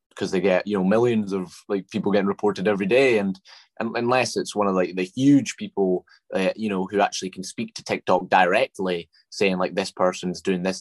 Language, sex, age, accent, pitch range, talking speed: English, male, 20-39, British, 90-95 Hz, 215 wpm